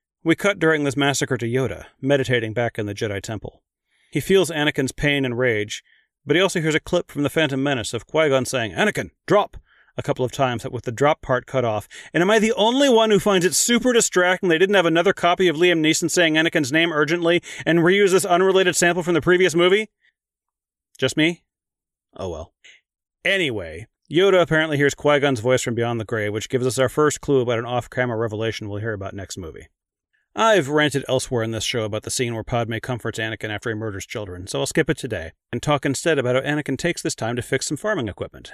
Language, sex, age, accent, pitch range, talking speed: English, male, 30-49, American, 115-160 Hz, 220 wpm